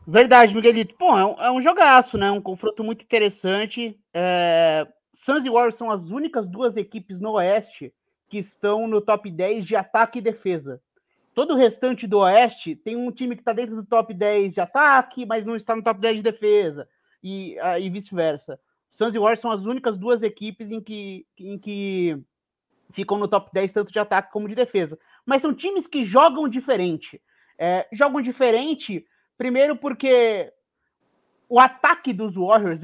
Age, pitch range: 20-39, 195-245 Hz